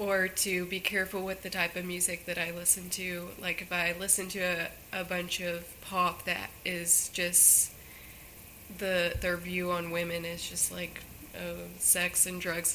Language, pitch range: English, 175-185 Hz